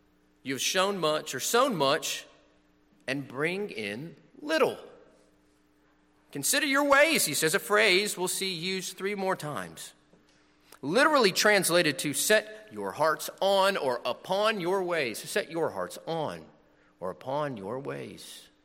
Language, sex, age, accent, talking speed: English, male, 40-59, American, 135 wpm